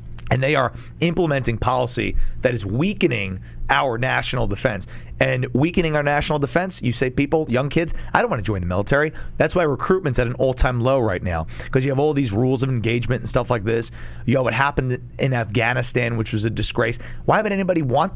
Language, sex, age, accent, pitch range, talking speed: English, male, 30-49, American, 115-160 Hz, 210 wpm